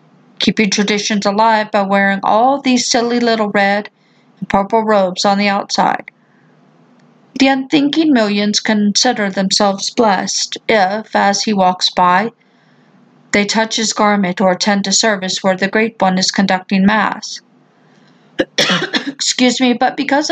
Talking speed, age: 135 wpm, 50-69